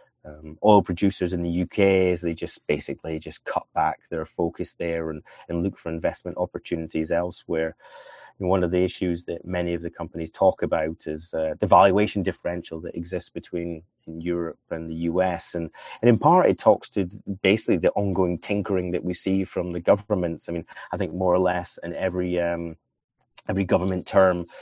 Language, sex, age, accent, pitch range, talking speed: English, male, 30-49, British, 85-95 Hz, 190 wpm